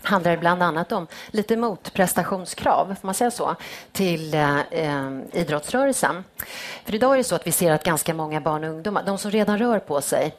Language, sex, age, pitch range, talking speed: Swedish, female, 30-49, 160-200 Hz, 195 wpm